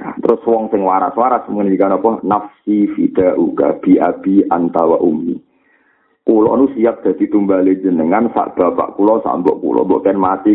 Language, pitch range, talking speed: Malay, 95-160 Hz, 155 wpm